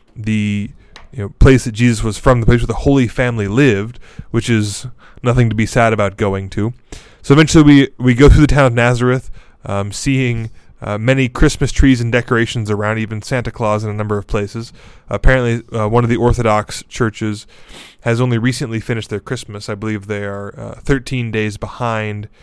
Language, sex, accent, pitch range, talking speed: English, male, American, 105-125 Hz, 185 wpm